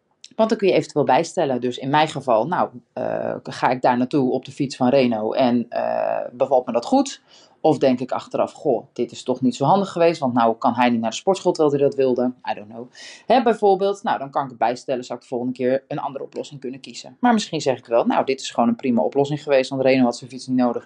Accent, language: Dutch, Dutch